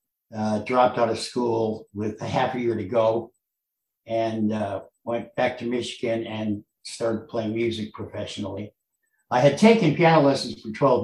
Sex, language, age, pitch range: male, English, 60-79, 110-130 Hz